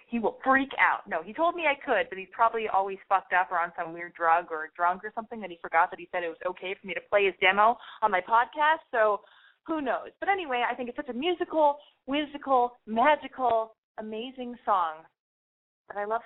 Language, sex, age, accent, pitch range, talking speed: English, female, 20-39, American, 185-295 Hz, 225 wpm